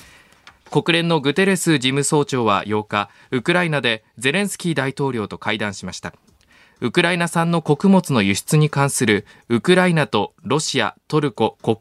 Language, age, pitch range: Japanese, 20-39, 120-170 Hz